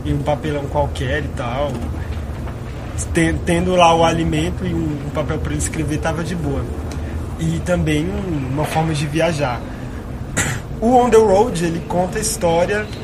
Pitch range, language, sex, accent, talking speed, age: 115-165 Hz, English, male, Brazilian, 160 wpm, 20-39